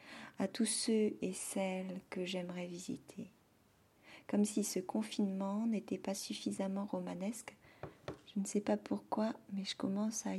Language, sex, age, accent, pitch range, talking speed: French, female, 40-59, French, 180-215 Hz, 145 wpm